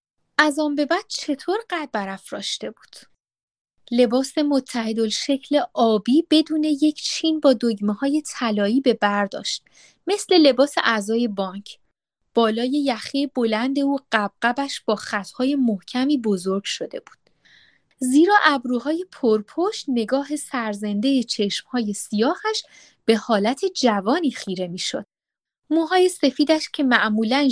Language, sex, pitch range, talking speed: Persian, female, 215-300 Hz, 115 wpm